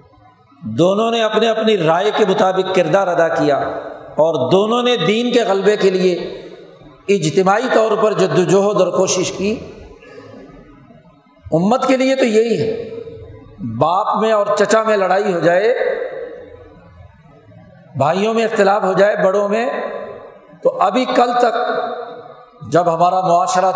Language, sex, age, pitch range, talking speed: Urdu, male, 50-69, 180-230 Hz, 135 wpm